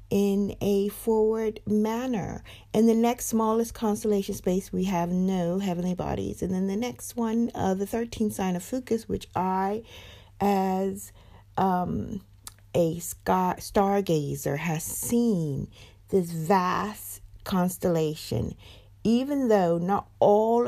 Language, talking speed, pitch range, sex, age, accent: English, 120 wpm, 165-230 Hz, female, 50-69, American